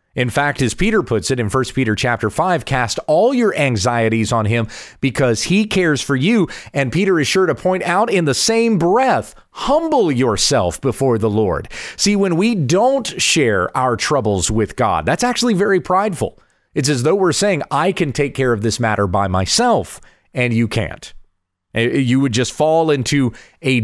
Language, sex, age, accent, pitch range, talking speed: English, male, 30-49, American, 110-155 Hz, 185 wpm